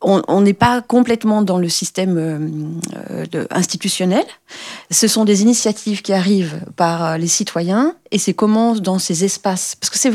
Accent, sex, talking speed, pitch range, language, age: French, female, 165 wpm, 175-230 Hz, French, 40-59